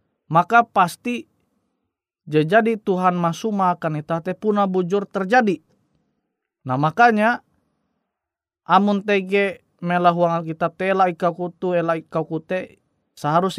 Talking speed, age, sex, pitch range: 100 wpm, 30-49, male, 135-185 Hz